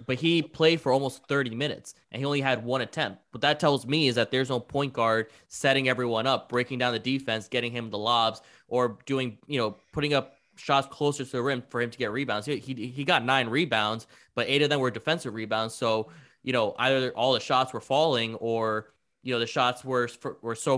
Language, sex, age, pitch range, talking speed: English, male, 20-39, 115-140 Hz, 235 wpm